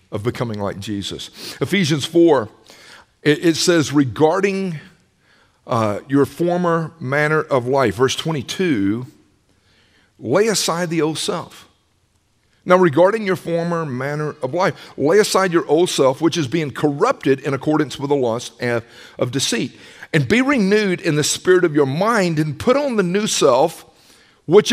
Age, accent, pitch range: 50-69, American, 135-185 Hz